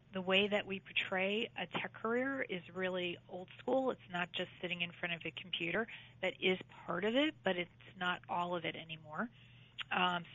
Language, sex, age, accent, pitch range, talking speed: English, female, 40-59, American, 170-200 Hz, 195 wpm